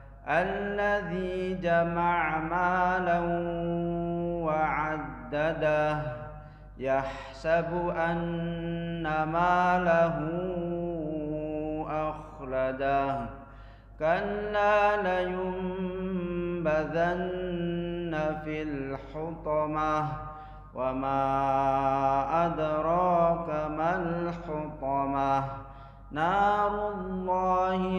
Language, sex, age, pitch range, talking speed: Indonesian, male, 40-59, 140-175 Hz, 40 wpm